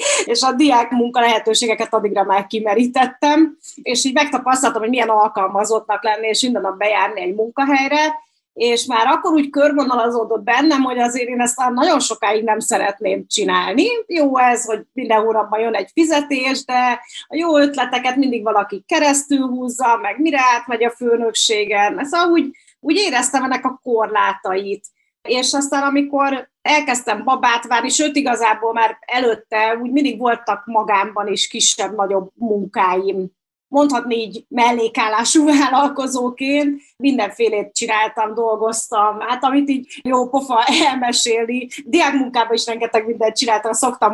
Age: 30-49